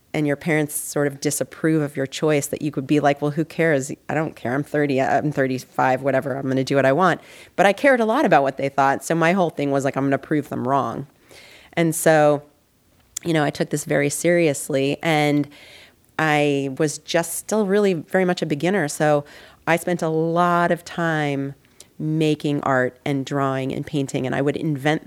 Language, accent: English, American